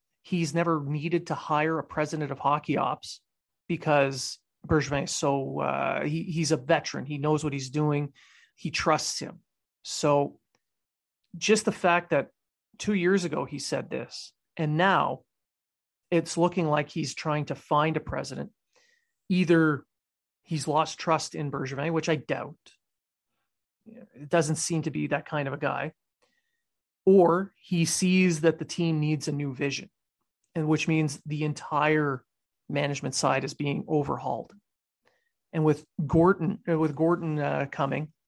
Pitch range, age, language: 145-170 Hz, 30-49, English